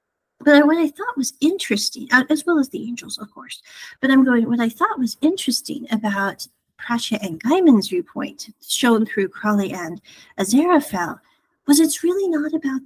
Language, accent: English, American